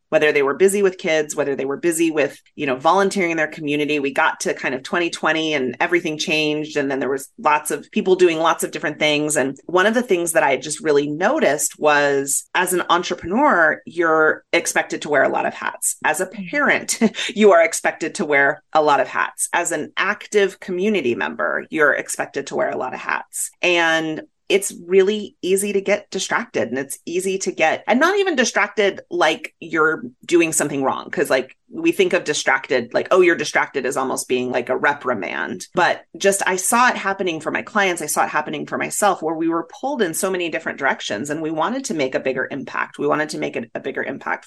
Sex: female